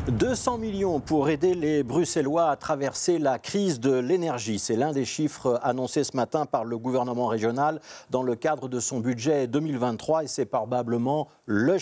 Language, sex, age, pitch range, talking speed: French, male, 50-69, 115-155 Hz, 175 wpm